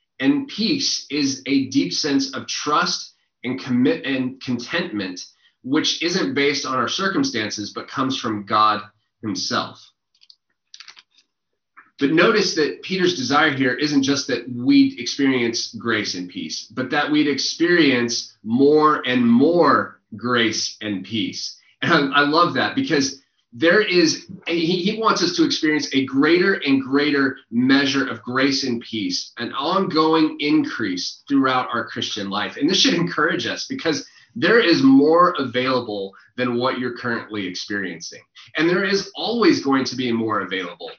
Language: English